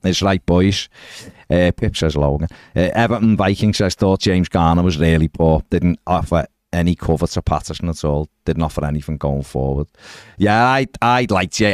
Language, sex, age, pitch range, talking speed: English, male, 40-59, 80-110 Hz, 185 wpm